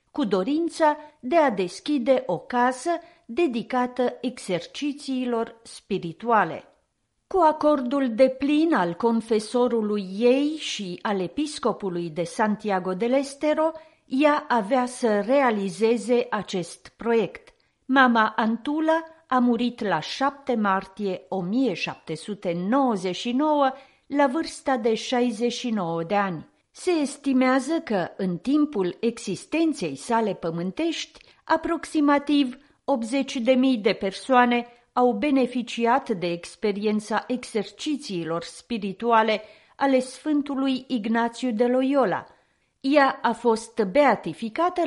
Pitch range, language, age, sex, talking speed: 205-280 Hz, Romanian, 40-59, female, 95 wpm